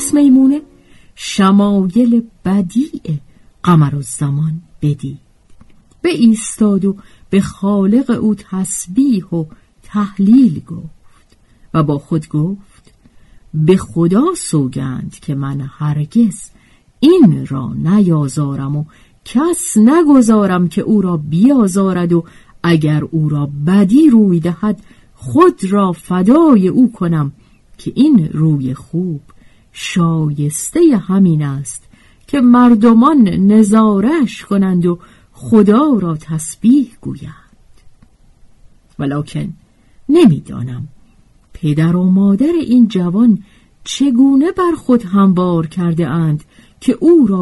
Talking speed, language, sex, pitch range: 105 wpm, Persian, female, 155-235 Hz